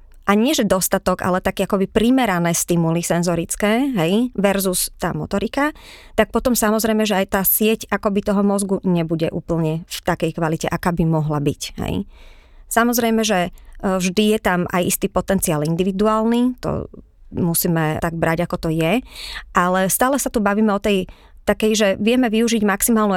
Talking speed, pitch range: 160 wpm, 175-220 Hz